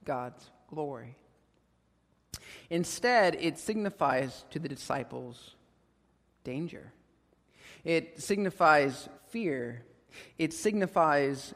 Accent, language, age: American, English, 40-59